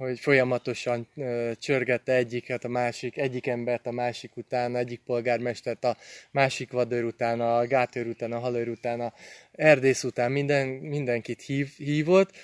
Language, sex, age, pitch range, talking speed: Hungarian, male, 20-39, 125-145 Hz, 150 wpm